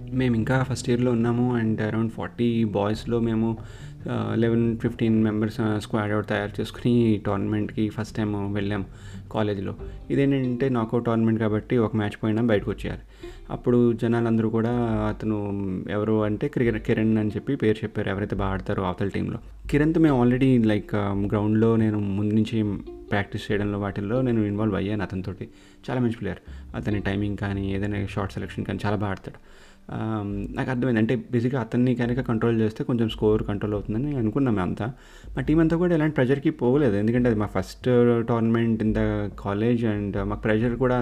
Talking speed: 160 wpm